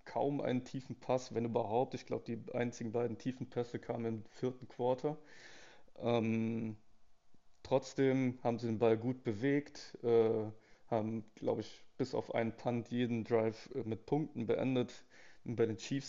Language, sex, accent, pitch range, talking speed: German, male, German, 115-125 Hz, 155 wpm